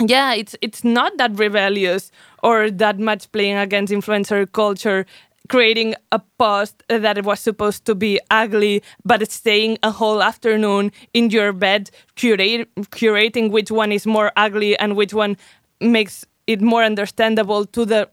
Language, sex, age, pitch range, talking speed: English, female, 20-39, 205-230 Hz, 155 wpm